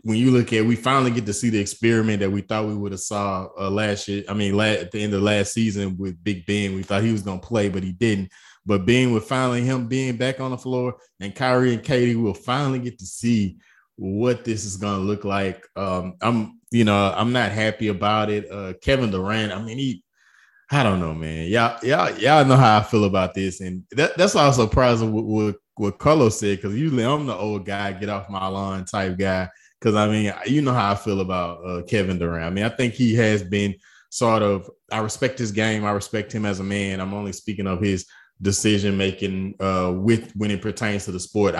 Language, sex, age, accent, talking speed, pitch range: English, male, 20-39, American, 240 wpm, 95-115 Hz